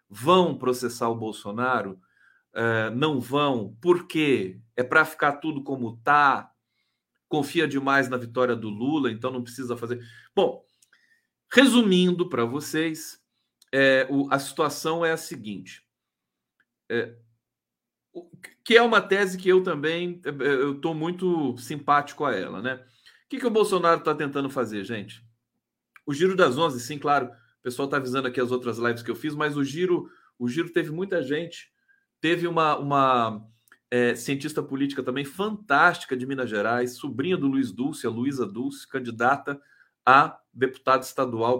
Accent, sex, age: Brazilian, male, 40-59